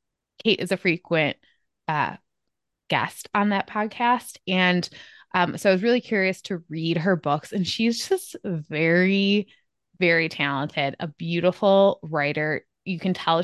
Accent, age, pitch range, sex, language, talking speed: American, 20-39, 155-185 Hz, female, English, 145 wpm